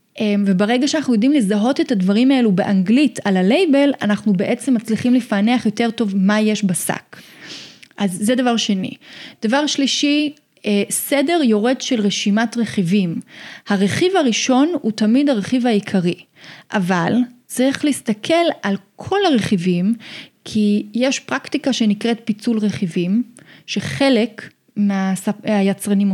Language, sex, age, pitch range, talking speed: Hebrew, female, 30-49, 205-270 Hz, 115 wpm